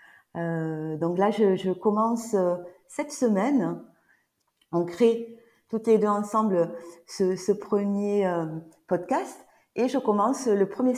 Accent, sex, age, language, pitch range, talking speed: French, female, 40-59, French, 160-200 Hz, 130 wpm